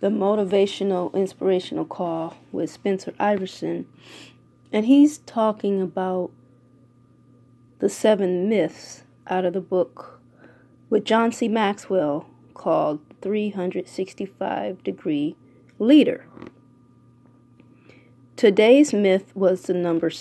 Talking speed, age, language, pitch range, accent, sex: 90 wpm, 30-49, English, 175-215 Hz, American, female